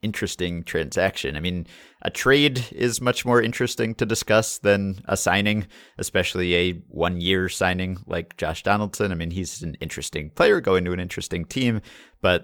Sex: male